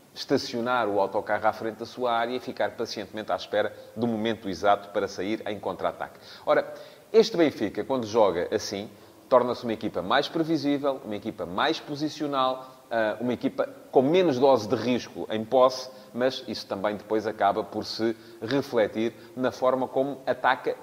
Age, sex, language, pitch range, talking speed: 30-49, male, Portuguese, 105-130 Hz, 160 wpm